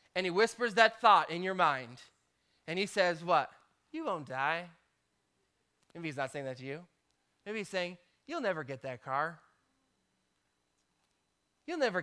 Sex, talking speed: male, 160 wpm